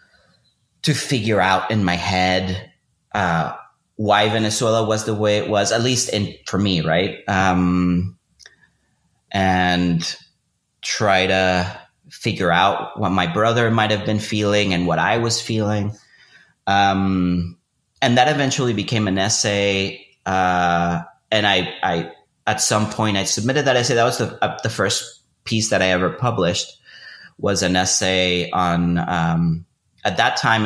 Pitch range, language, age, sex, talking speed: 90-110 Hz, English, 30-49, male, 145 wpm